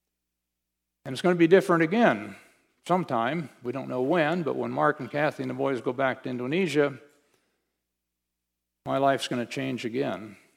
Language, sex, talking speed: English, male, 170 wpm